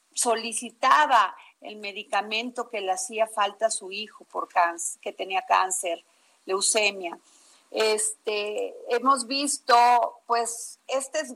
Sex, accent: female, Mexican